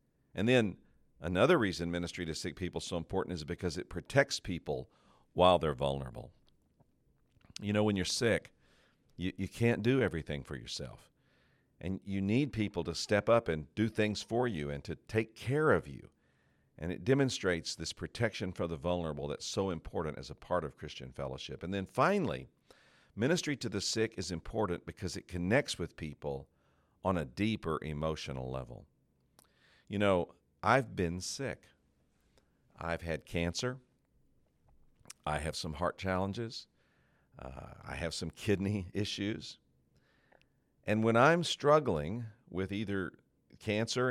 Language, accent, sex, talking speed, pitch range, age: English, American, male, 150 wpm, 80-110 Hz, 50-69